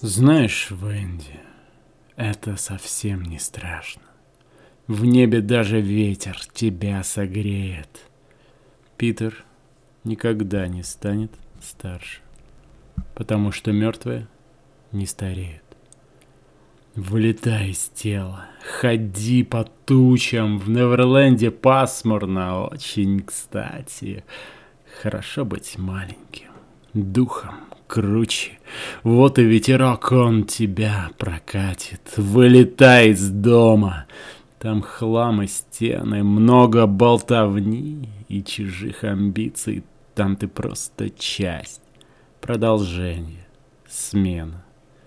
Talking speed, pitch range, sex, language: 85 wpm, 95-120 Hz, male, Russian